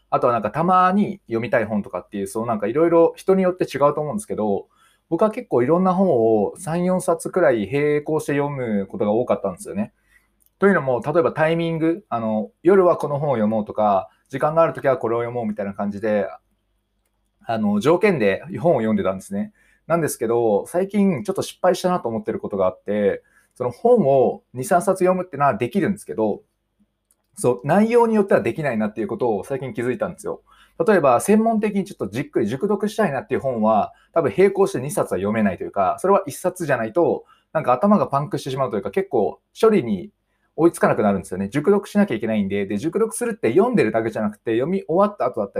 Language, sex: Japanese, male